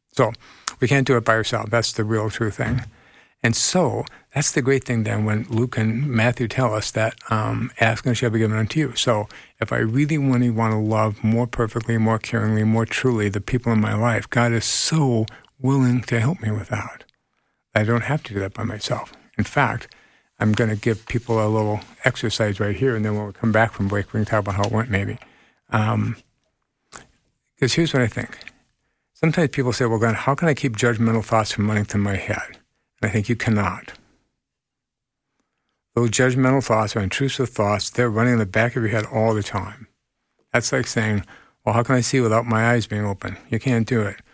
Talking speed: 210 wpm